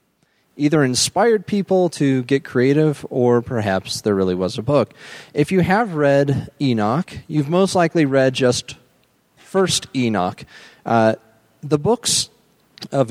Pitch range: 110-135 Hz